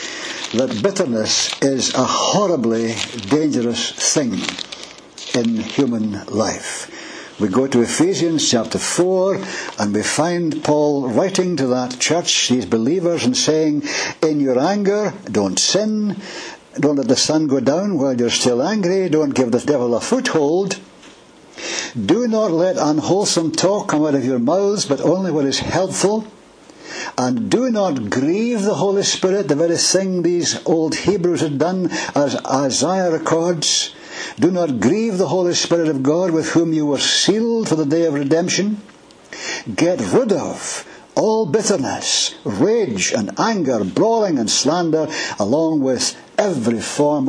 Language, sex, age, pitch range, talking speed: English, male, 60-79, 130-185 Hz, 145 wpm